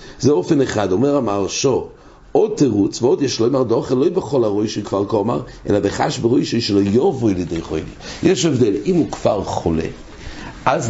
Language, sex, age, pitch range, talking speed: English, male, 60-79, 95-135 Hz, 175 wpm